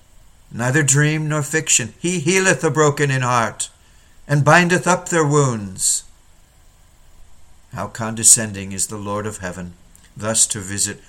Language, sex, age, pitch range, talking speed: English, male, 60-79, 100-135 Hz, 135 wpm